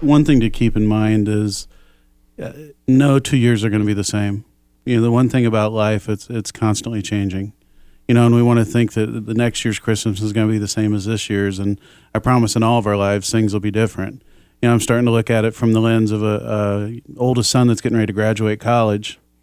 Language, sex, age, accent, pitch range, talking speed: English, male, 40-59, American, 105-120 Hz, 255 wpm